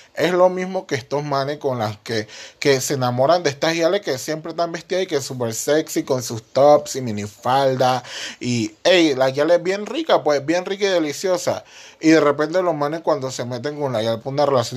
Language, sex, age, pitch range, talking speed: Spanish, male, 30-49, 130-170 Hz, 225 wpm